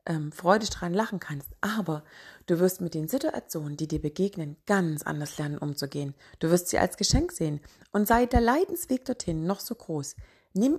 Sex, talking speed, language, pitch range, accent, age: female, 180 wpm, German, 165-235 Hz, German, 40-59